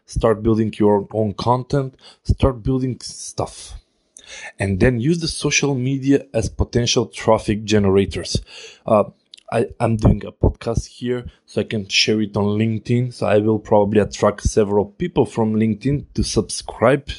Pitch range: 105-125 Hz